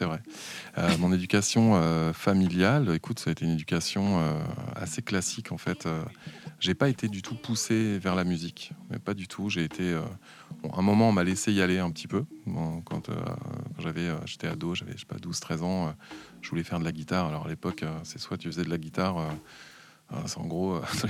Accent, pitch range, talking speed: French, 80-100 Hz, 235 wpm